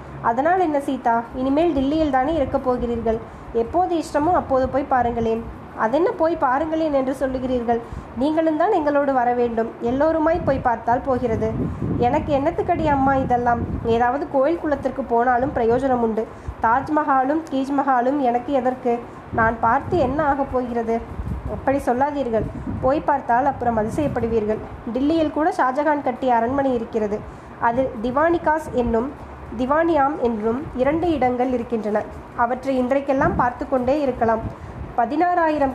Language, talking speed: Tamil, 120 wpm